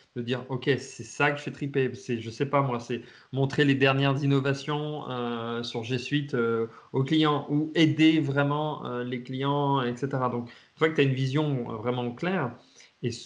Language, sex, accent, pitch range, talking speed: French, male, French, 130-155 Hz, 210 wpm